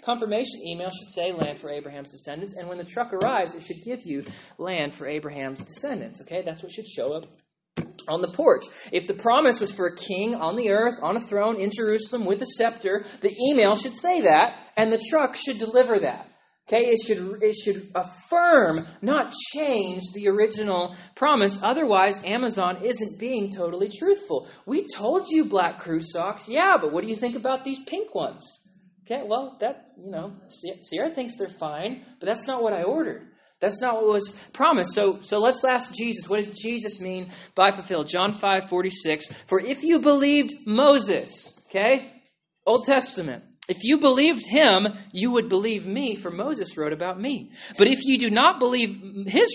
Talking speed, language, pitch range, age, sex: 185 wpm, English, 185-255 Hz, 20-39, male